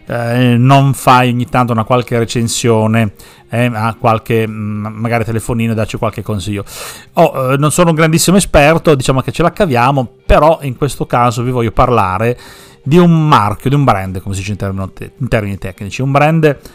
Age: 40-59